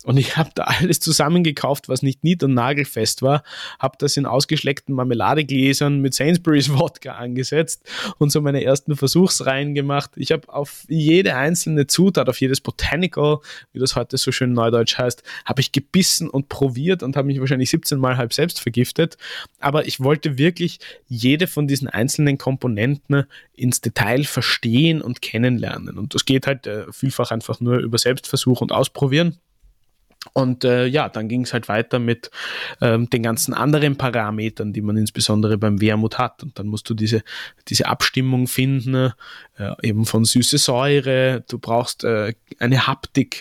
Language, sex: English, male